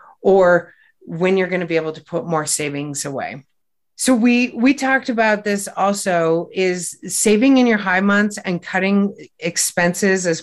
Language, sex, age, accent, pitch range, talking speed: English, female, 30-49, American, 165-195 Hz, 165 wpm